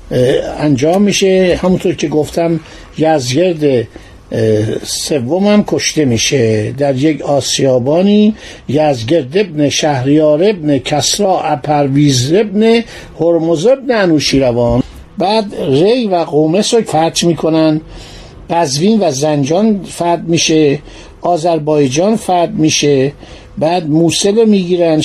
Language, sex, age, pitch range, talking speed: Persian, male, 60-79, 150-185 Hz, 95 wpm